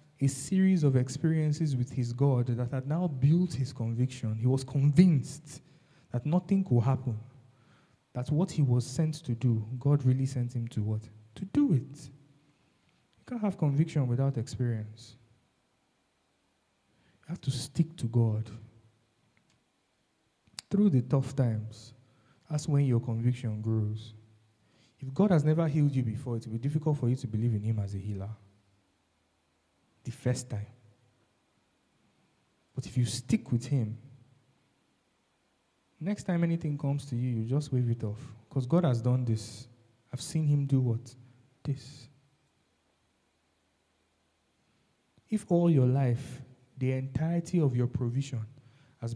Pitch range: 115-140 Hz